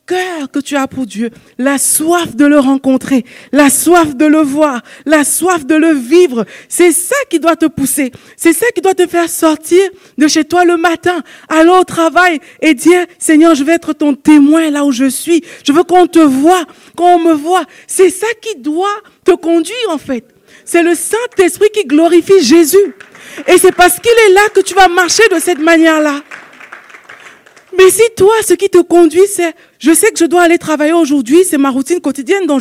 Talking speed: 200 wpm